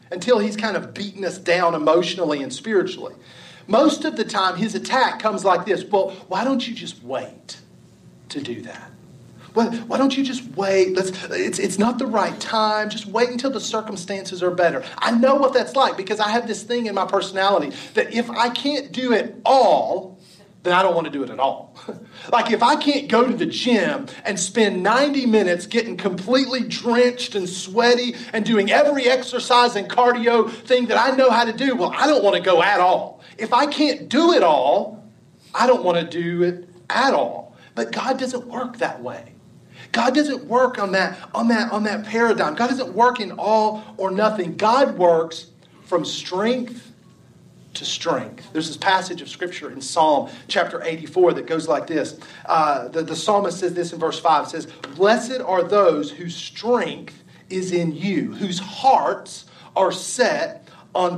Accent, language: American, English